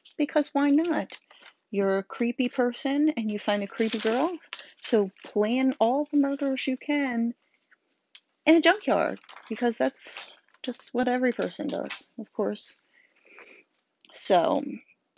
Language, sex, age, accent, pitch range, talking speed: English, female, 40-59, American, 190-285 Hz, 130 wpm